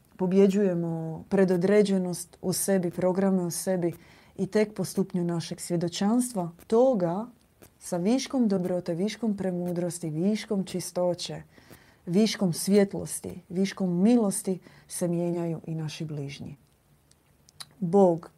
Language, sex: Croatian, female